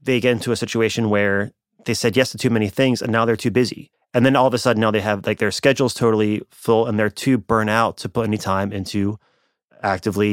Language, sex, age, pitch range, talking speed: English, male, 30-49, 100-125 Hz, 250 wpm